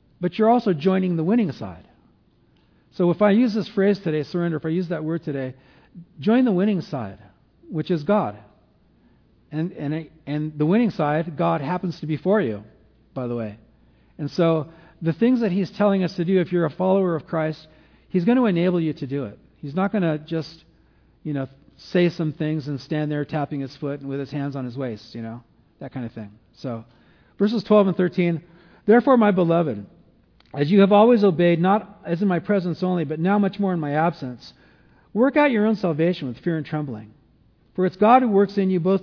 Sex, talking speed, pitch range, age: male, 215 wpm, 135-195 Hz, 50-69